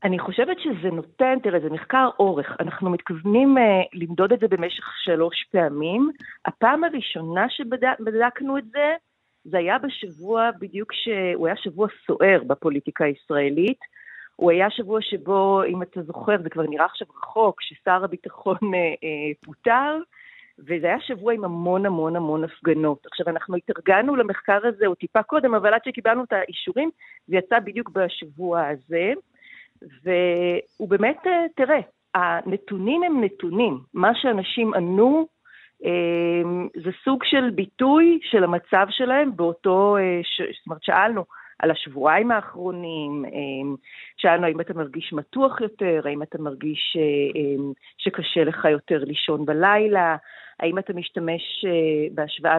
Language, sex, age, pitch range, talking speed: Hebrew, female, 40-59, 165-225 Hz, 135 wpm